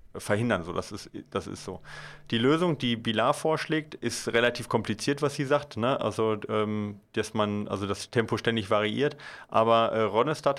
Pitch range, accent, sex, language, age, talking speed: 110-130 Hz, German, male, German, 30-49, 175 wpm